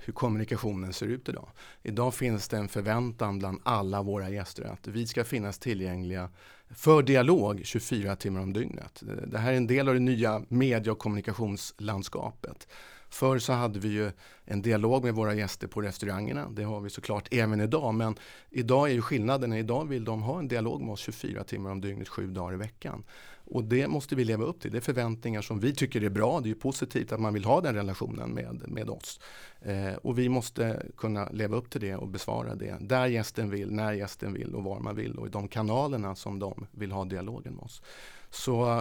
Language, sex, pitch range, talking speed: Swedish, male, 100-125 Hz, 210 wpm